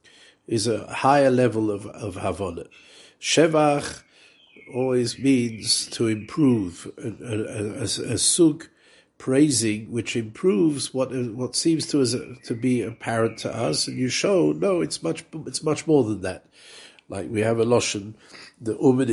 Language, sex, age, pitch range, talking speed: English, male, 60-79, 105-130 Hz, 150 wpm